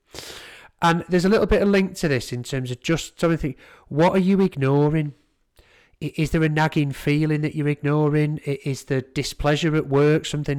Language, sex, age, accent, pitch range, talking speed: English, male, 30-49, British, 120-150 Hz, 180 wpm